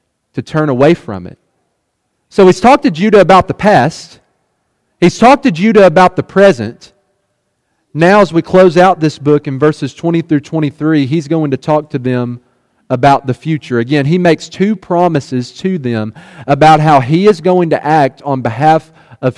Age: 40-59